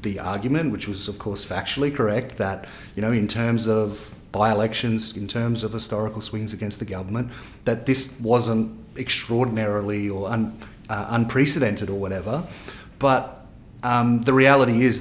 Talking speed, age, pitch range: 150 wpm, 30-49, 105-120 Hz